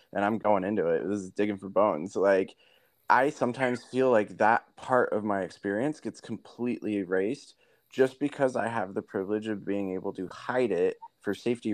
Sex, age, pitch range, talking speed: male, 20-39, 100-130 Hz, 190 wpm